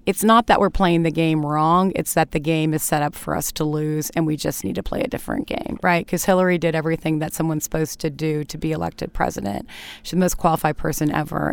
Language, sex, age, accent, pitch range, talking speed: English, female, 30-49, American, 155-185 Hz, 250 wpm